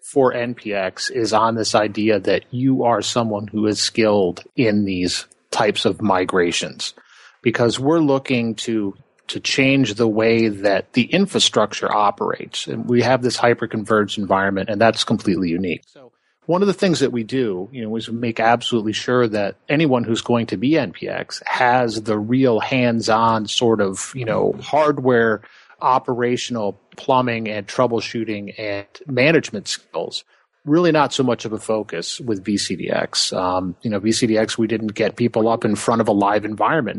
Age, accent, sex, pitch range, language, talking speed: 30-49, American, male, 105-125 Hz, English, 165 wpm